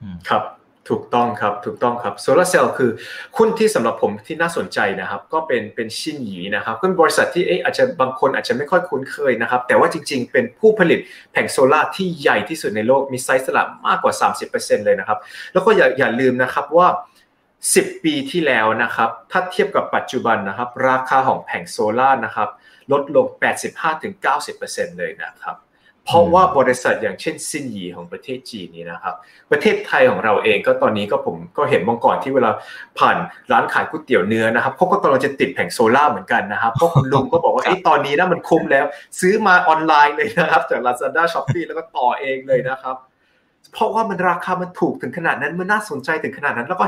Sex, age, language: male, 20-39, Thai